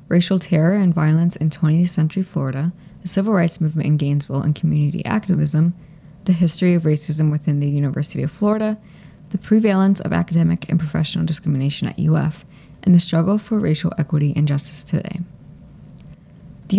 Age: 20-39